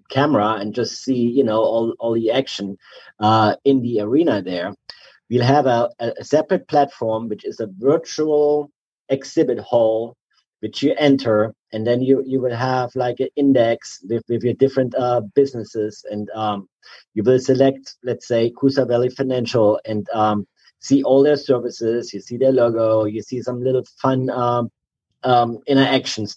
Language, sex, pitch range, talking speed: English, male, 110-130 Hz, 165 wpm